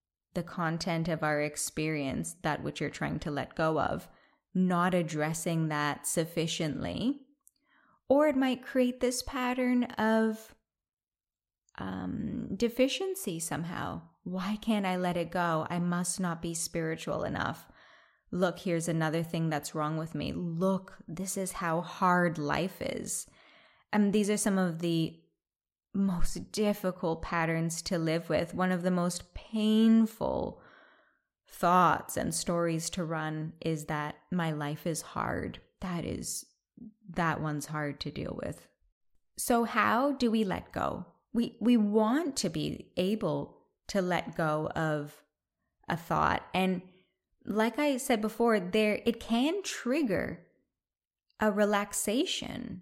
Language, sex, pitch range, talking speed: English, female, 160-220 Hz, 135 wpm